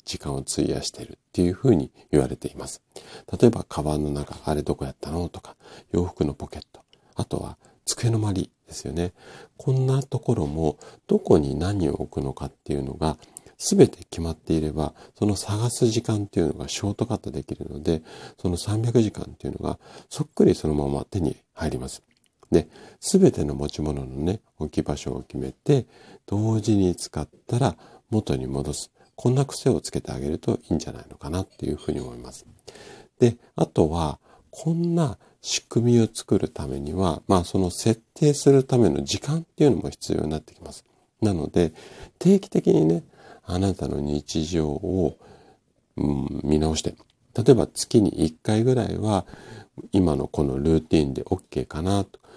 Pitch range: 75-110 Hz